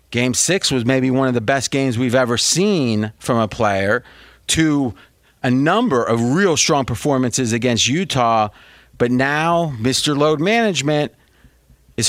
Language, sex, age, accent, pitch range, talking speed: English, male, 30-49, American, 120-160 Hz, 150 wpm